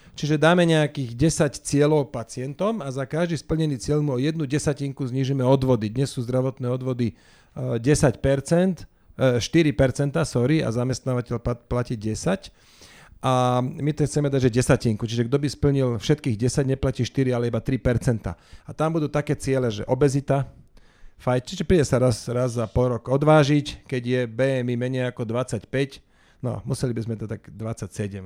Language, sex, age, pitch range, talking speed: Slovak, male, 40-59, 115-145 Hz, 160 wpm